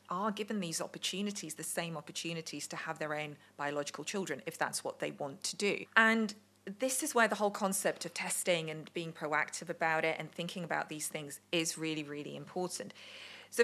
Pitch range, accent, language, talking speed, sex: 165-225 Hz, British, English, 195 wpm, female